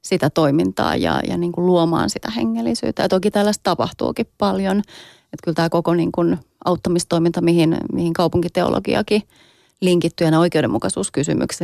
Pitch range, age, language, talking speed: 155-190 Hz, 30-49, Finnish, 135 wpm